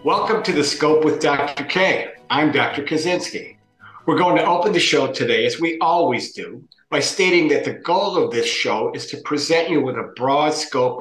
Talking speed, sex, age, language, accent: 200 wpm, male, 50-69, English, American